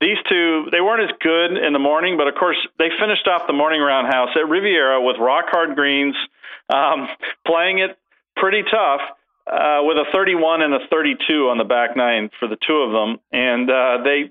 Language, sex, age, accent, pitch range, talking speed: English, male, 40-59, American, 120-150 Hz, 200 wpm